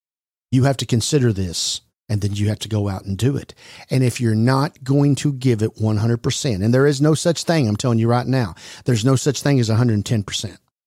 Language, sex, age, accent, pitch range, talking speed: English, male, 40-59, American, 110-130 Hz, 260 wpm